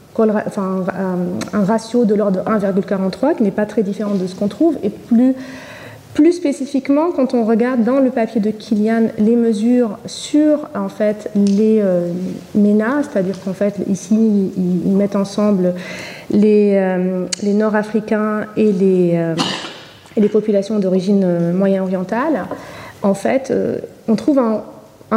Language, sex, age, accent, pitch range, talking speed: French, female, 30-49, French, 195-250 Hz, 130 wpm